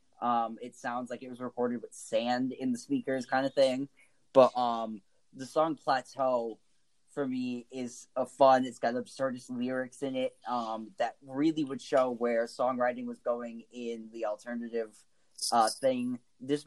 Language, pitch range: English, 115-130 Hz